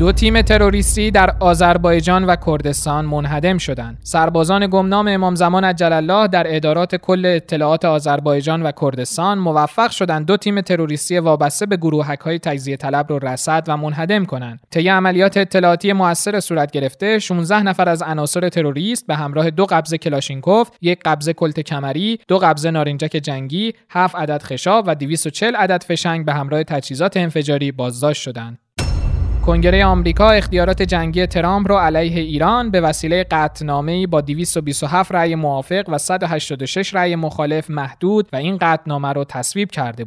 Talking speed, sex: 150 wpm, male